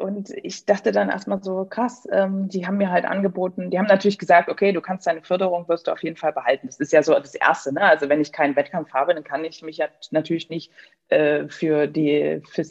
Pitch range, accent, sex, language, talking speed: 155-200 Hz, German, female, German, 240 wpm